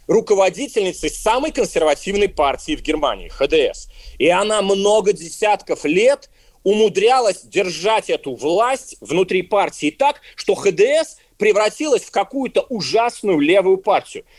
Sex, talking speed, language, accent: male, 115 wpm, Russian, native